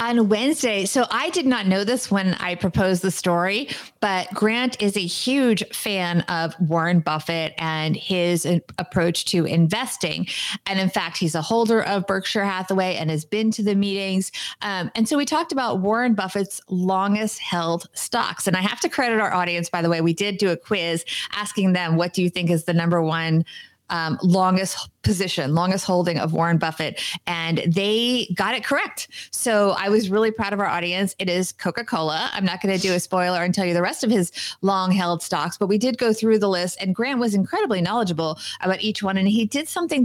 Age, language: 30-49, English